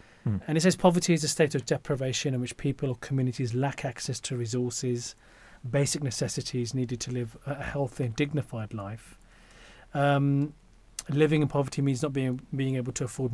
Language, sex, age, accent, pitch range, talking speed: English, male, 30-49, British, 120-145 Hz, 175 wpm